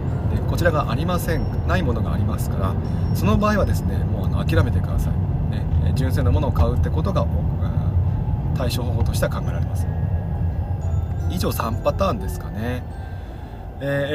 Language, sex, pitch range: Japanese, male, 90-115 Hz